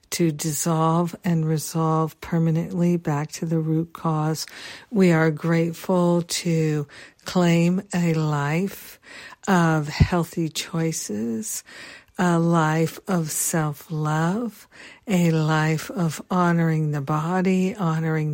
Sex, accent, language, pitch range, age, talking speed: female, American, English, 160-175 Hz, 60-79, 100 wpm